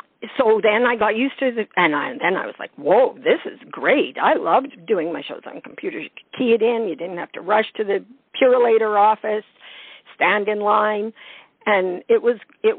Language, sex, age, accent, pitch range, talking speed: English, female, 50-69, American, 190-245 Hz, 210 wpm